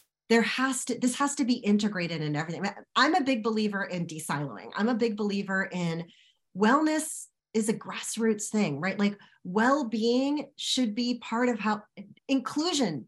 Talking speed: 160 wpm